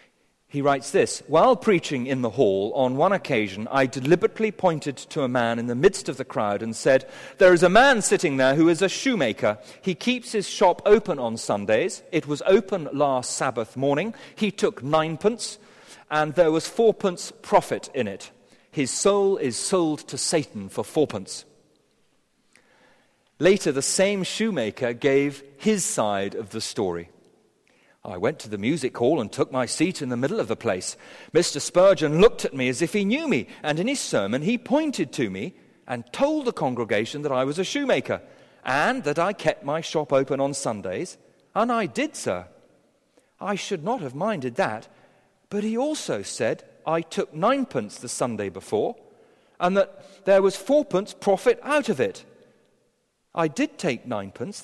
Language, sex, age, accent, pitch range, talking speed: English, male, 40-59, British, 140-210 Hz, 175 wpm